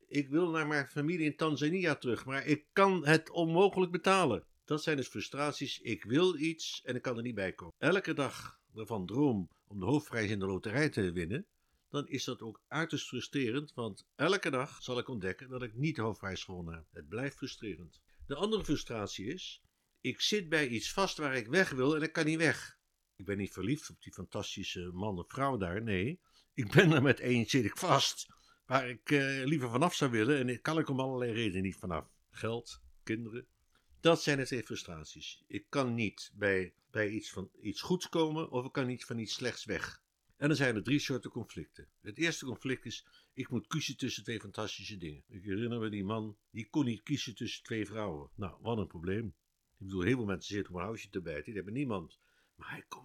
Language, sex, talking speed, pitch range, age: Dutch, male, 215 wpm, 105-150 Hz, 60-79